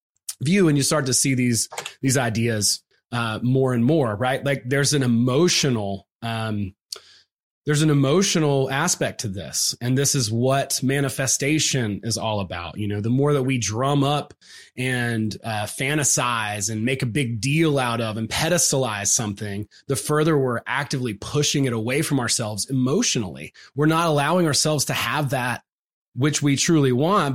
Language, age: English, 30-49